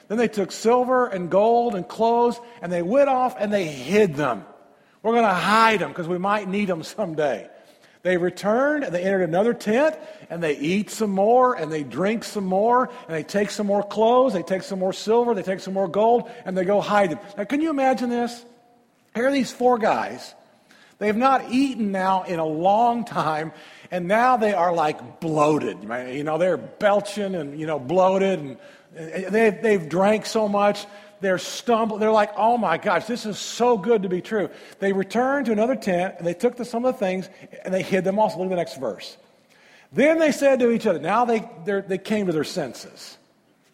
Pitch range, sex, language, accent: 185-245 Hz, male, English, American